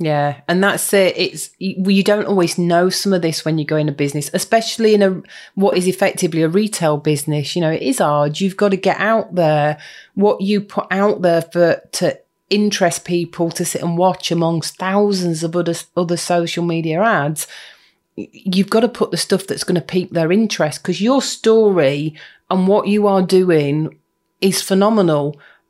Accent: British